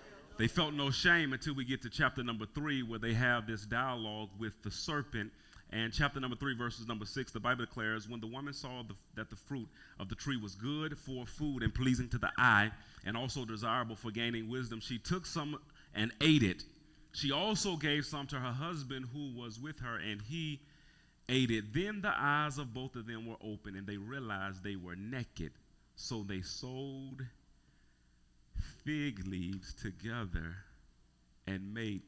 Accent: American